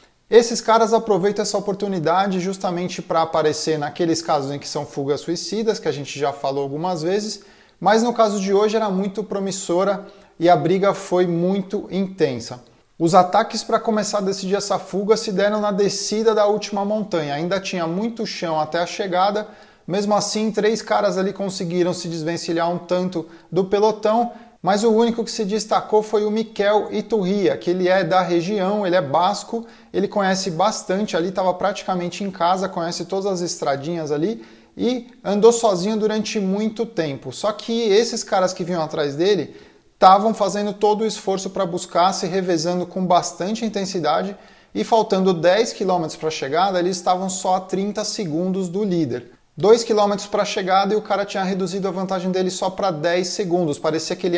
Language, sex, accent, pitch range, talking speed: Portuguese, male, Brazilian, 175-205 Hz, 180 wpm